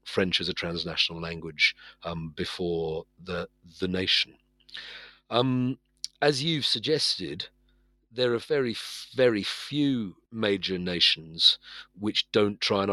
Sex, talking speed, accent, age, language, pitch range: male, 115 wpm, British, 40-59, English, 90-115 Hz